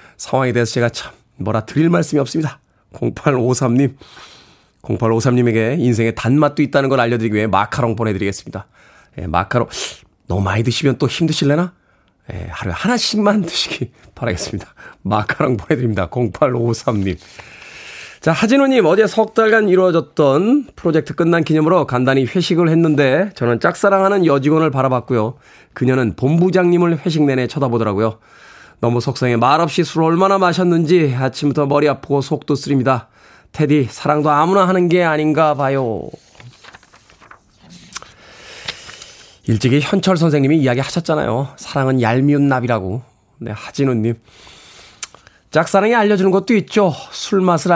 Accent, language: native, Korean